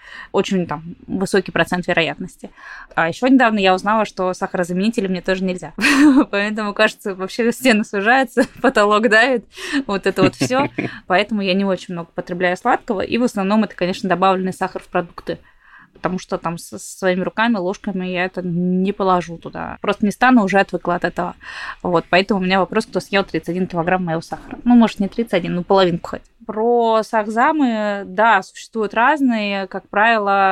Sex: female